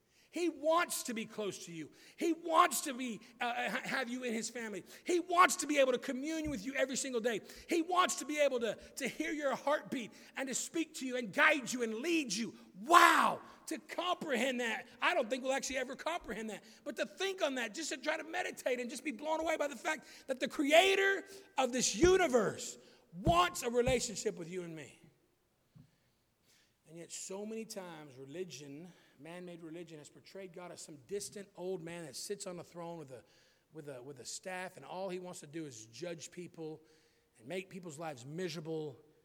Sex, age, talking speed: male, 40-59, 205 wpm